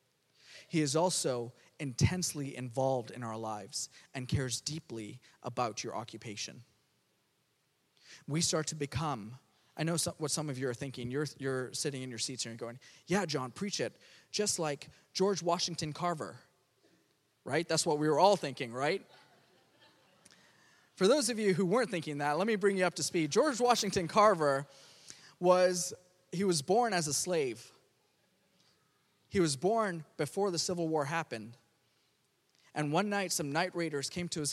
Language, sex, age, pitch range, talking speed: English, male, 20-39, 125-165 Hz, 165 wpm